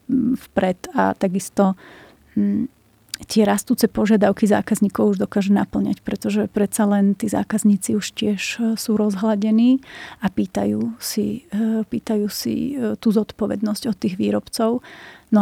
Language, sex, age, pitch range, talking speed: Slovak, female, 30-49, 195-215 Hz, 115 wpm